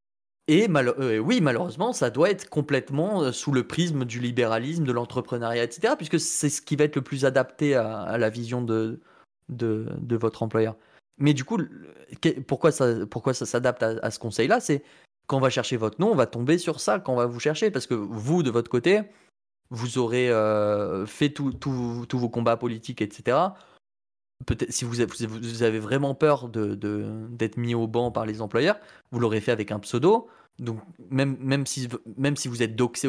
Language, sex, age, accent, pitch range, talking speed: French, male, 20-39, French, 115-140 Hz, 200 wpm